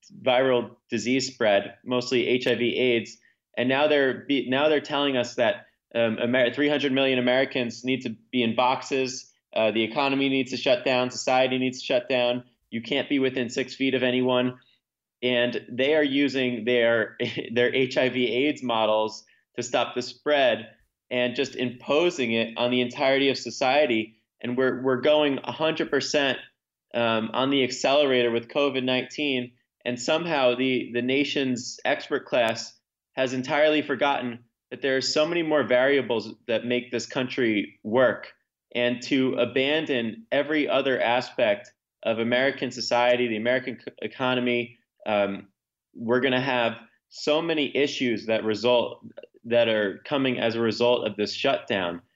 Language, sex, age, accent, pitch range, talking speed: English, male, 20-39, American, 120-135 Hz, 150 wpm